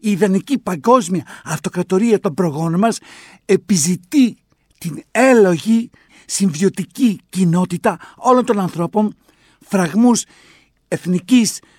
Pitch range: 175-220 Hz